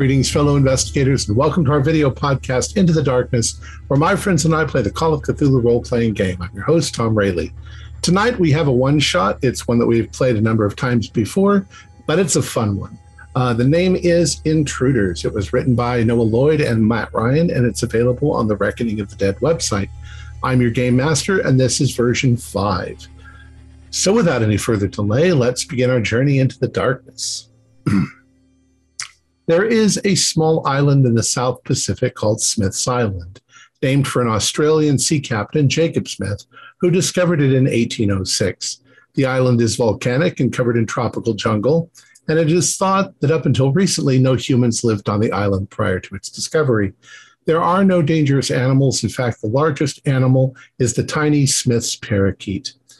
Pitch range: 110-150 Hz